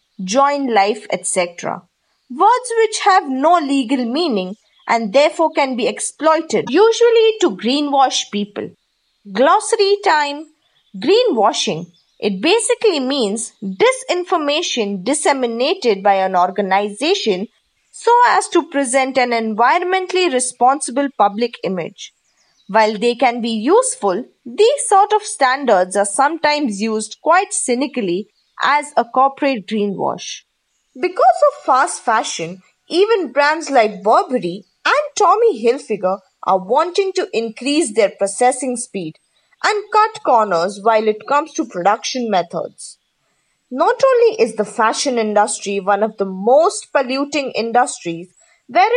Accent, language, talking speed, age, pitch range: Indian, English, 120 wpm, 20-39, 215-345 Hz